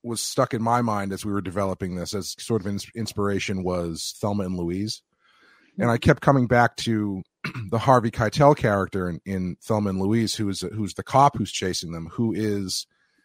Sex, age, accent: male, 30-49, American